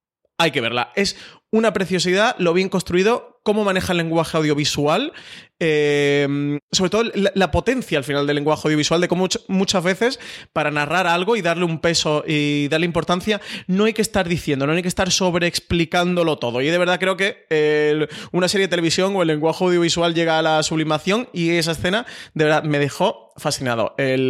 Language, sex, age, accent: Spanish, male, 20-39, Spanish